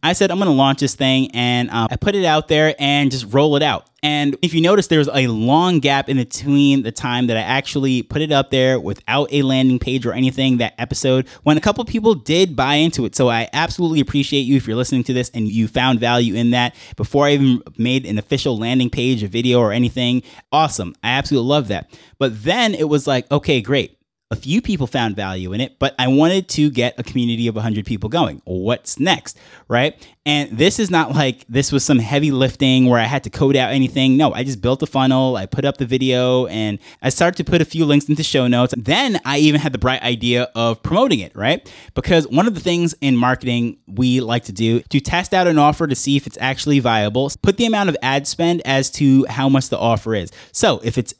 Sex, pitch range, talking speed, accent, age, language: male, 120-145 Hz, 240 wpm, American, 20-39, English